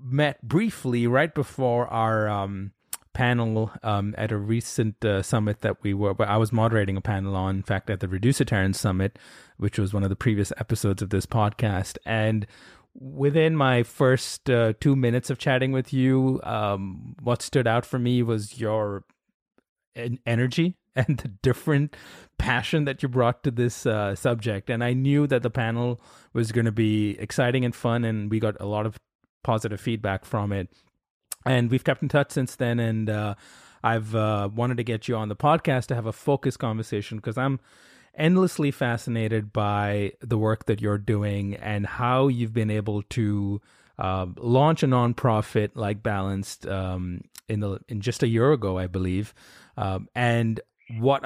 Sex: male